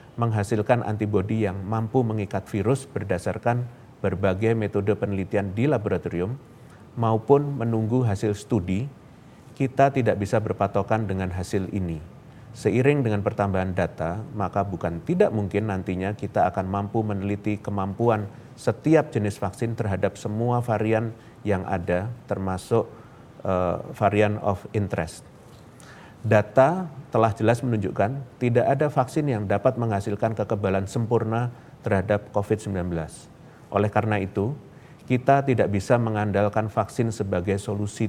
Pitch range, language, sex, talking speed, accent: 100-120 Hz, Indonesian, male, 115 wpm, native